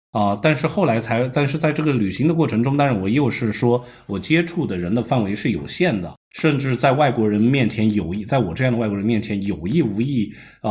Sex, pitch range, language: male, 100-135 Hz, Chinese